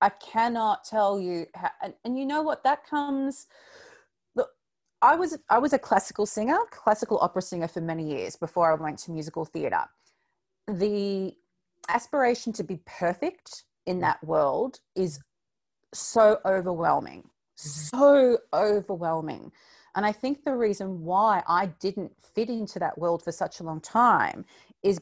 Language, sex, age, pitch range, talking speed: English, female, 30-49, 175-240 Hz, 150 wpm